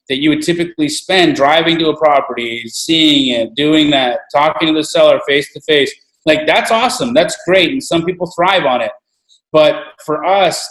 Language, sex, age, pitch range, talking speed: English, male, 30-49, 145-185 Hz, 180 wpm